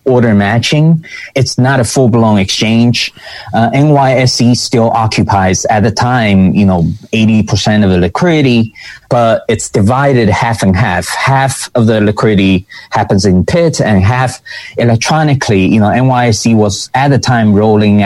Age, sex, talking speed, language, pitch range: 20-39, male, 145 wpm, English, 105-145 Hz